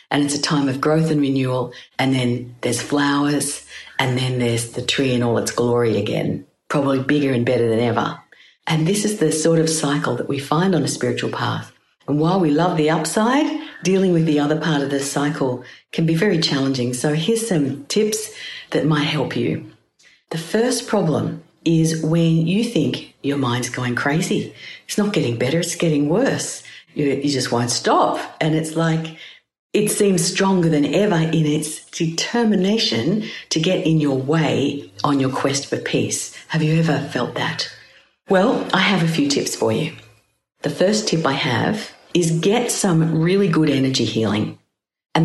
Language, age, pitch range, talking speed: English, 50-69, 140-165 Hz, 185 wpm